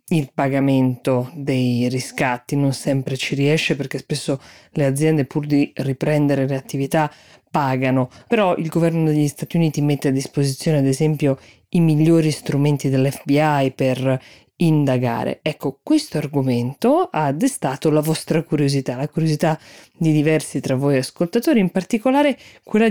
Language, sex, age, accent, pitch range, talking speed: Italian, female, 20-39, native, 140-175 Hz, 140 wpm